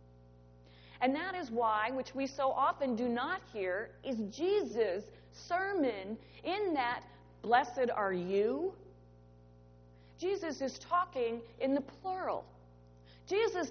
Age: 40-59